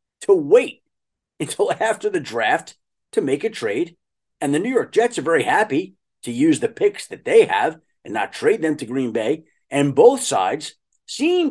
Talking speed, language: 190 wpm, English